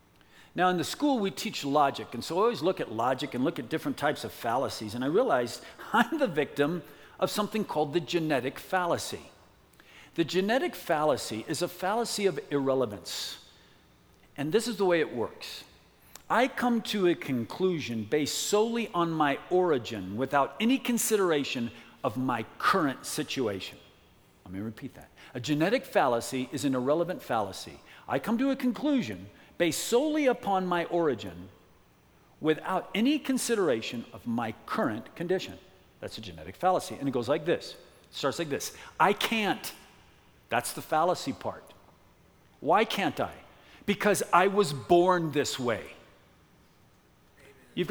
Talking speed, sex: 155 wpm, male